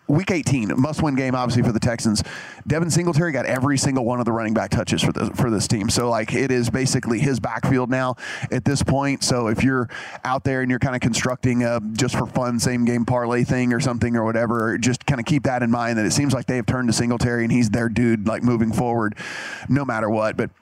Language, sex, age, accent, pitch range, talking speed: English, male, 30-49, American, 120-140 Hz, 235 wpm